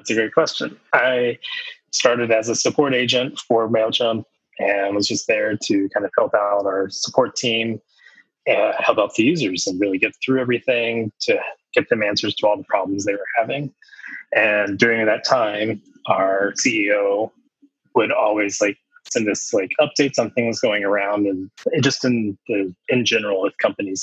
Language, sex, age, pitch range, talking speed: English, male, 20-39, 100-140 Hz, 175 wpm